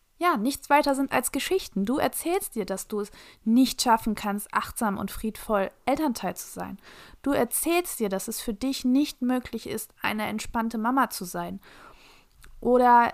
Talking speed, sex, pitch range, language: 170 wpm, female, 225-270 Hz, German